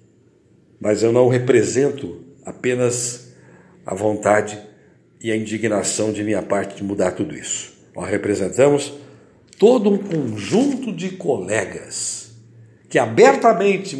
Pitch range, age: 115-175 Hz, 60-79